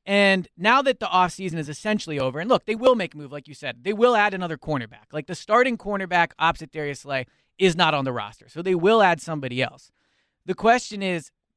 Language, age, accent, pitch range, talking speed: English, 30-49, American, 145-210 Hz, 230 wpm